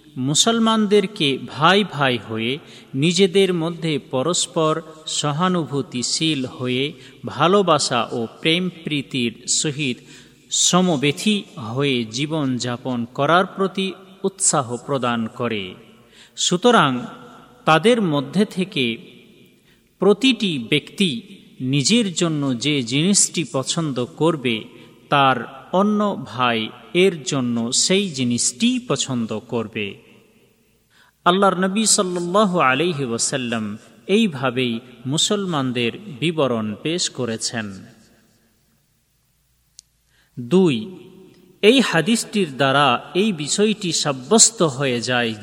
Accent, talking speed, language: native, 80 wpm, Bengali